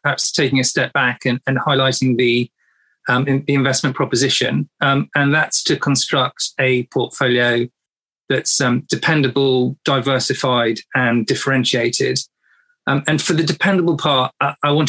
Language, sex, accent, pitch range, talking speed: English, male, British, 125-145 Hz, 140 wpm